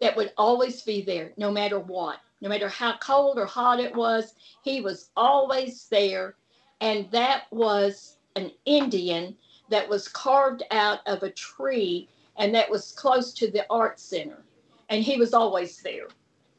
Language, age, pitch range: English, 50-69, 215-270 Hz